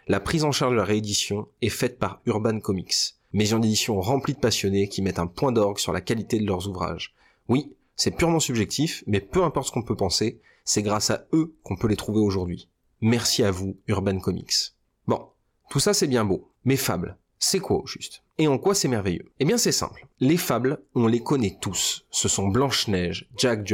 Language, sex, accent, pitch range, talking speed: French, male, French, 100-135 Hz, 215 wpm